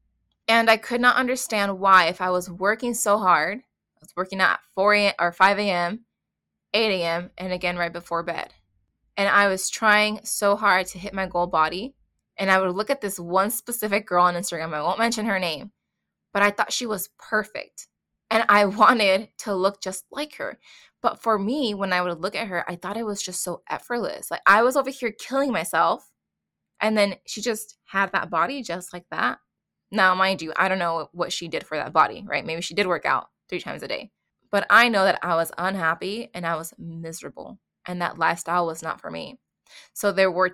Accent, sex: American, female